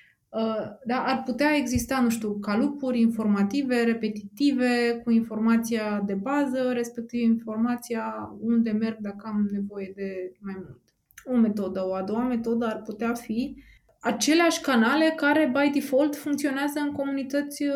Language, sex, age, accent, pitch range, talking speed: Romanian, female, 20-39, native, 200-260 Hz, 140 wpm